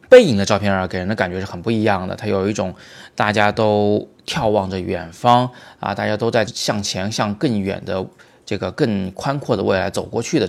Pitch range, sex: 95-120 Hz, male